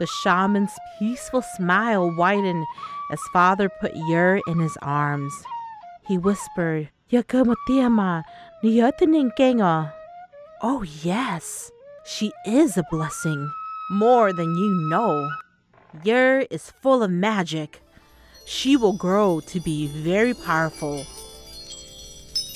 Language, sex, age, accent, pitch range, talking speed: English, female, 30-49, American, 170-270 Hz, 95 wpm